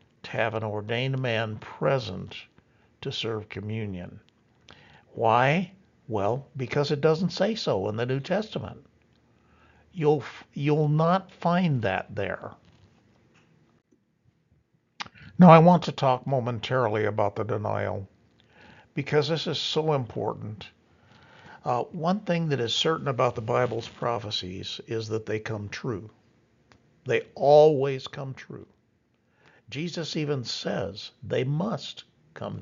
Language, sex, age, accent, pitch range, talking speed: English, male, 60-79, American, 115-155 Hz, 120 wpm